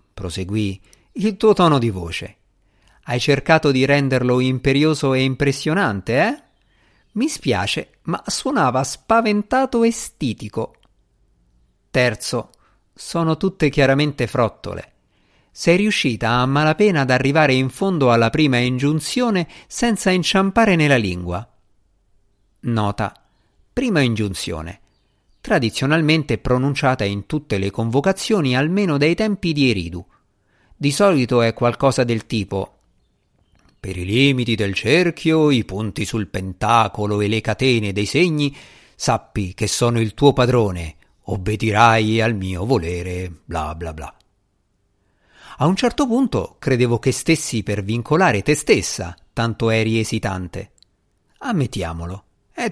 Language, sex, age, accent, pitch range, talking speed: Italian, male, 50-69, native, 100-145 Hz, 120 wpm